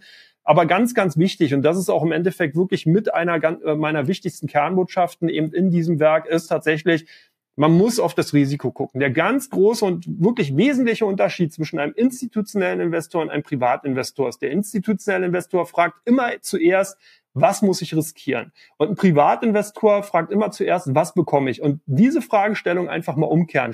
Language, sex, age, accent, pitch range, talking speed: German, male, 30-49, German, 155-195 Hz, 170 wpm